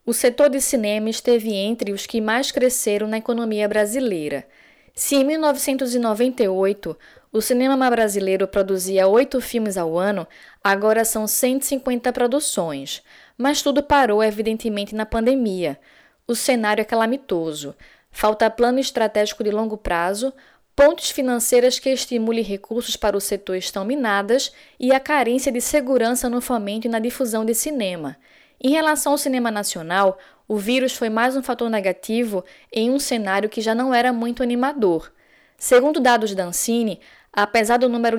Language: Portuguese